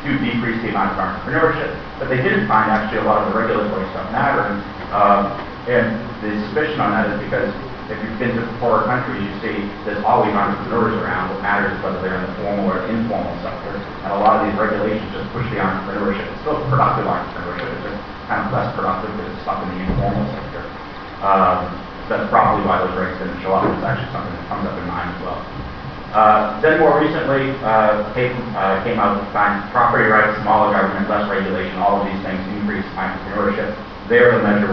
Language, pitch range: Italian, 95-110 Hz